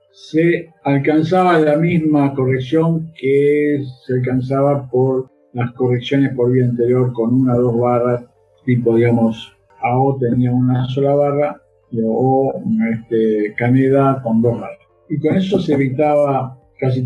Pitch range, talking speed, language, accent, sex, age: 120-145 Hz, 130 wpm, English, Argentinian, male, 50-69